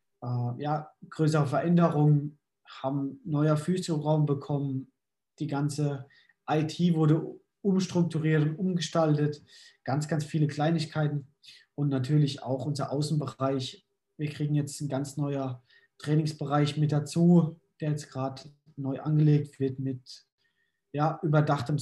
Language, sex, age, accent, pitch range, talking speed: German, male, 20-39, German, 140-160 Hz, 115 wpm